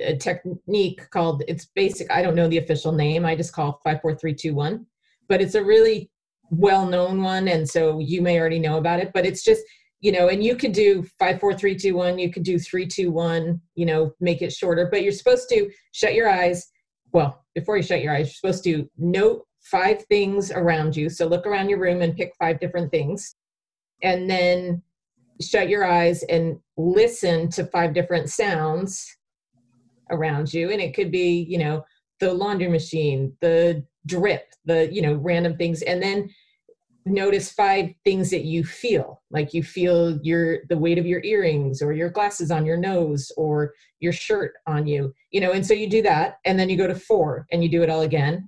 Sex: female